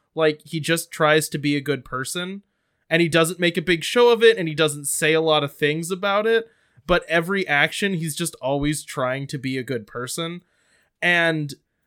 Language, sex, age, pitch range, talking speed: English, male, 20-39, 140-170 Hz, 205 wpm